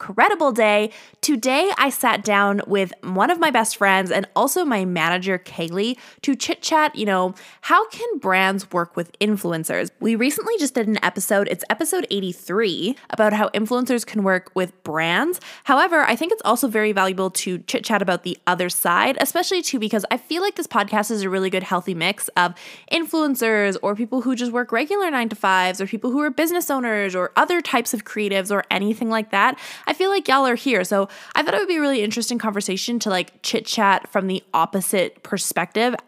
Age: 10-29